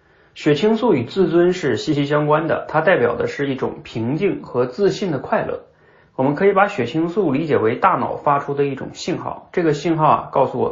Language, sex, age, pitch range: Chinese, male, 30-49, 125-185 Hz